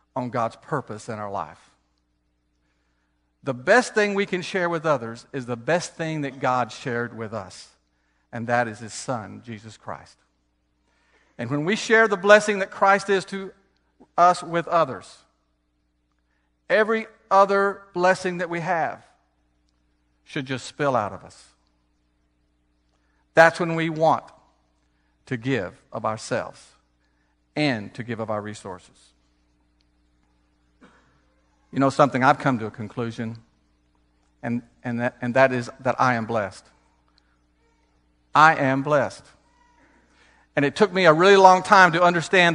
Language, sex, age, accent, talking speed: English, male, 50-69, American, 140 wpm